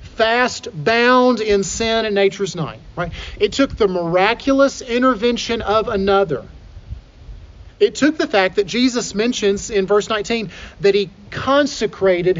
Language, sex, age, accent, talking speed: English, male, 40-59, American, 130 wpm